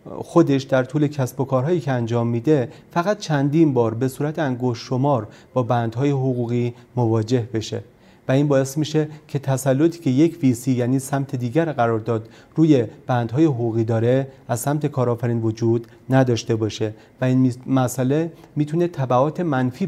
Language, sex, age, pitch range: Persian, male, 40-59, 120-150 Hz